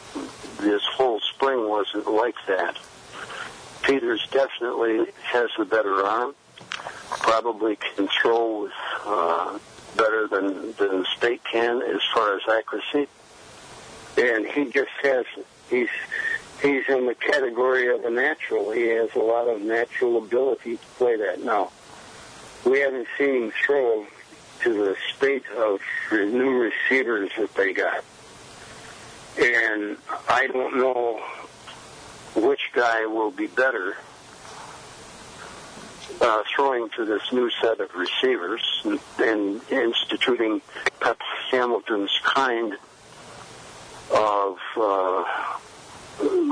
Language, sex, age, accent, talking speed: English, male, 60-79, American, 110 wpm